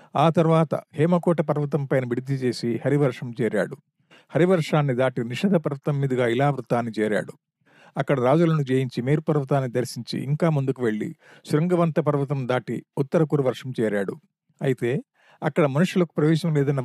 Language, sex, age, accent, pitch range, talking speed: Telugu, male, 50-69, native, 130-160 Hz, 130 wpm